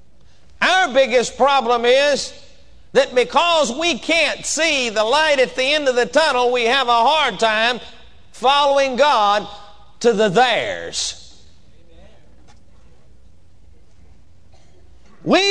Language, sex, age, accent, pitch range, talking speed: English, male, 50-69, American, 250-335 Hz, 105 wpm